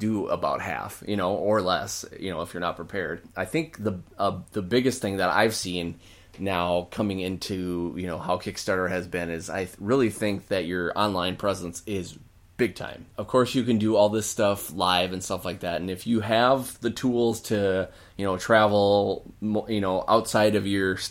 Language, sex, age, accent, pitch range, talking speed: English, male, 20-39, American, 90-110 Hz, 205 wpm